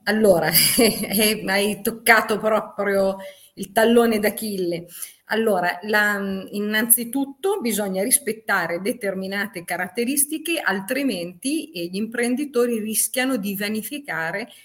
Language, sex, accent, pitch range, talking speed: Italian, female, native, 180-230 Hz, 80 wpm